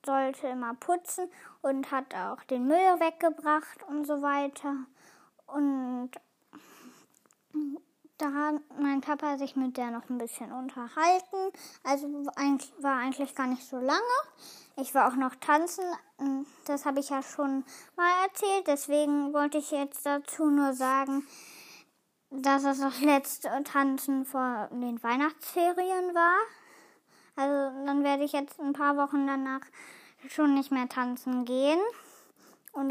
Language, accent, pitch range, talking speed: German, German, 275-330 Hz, 135 wpm